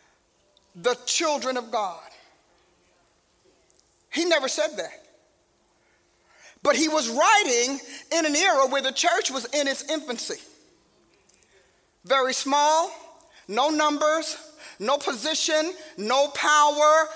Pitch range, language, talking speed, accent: 265-325 Hz, English, 105 wpm, American